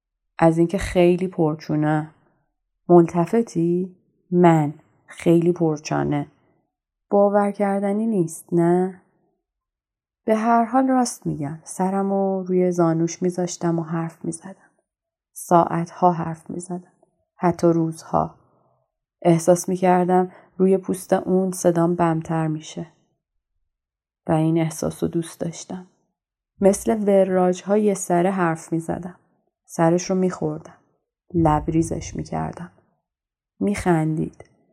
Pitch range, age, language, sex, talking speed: 165-195 Hz, 30-49, Persian, female, 90 wpm